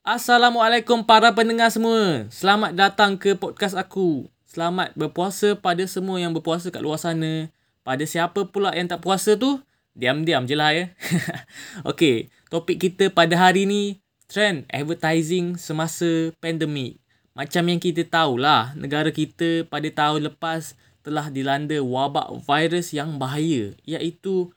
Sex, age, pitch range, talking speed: male, 20-39, 145-185 Hz, 130 wpm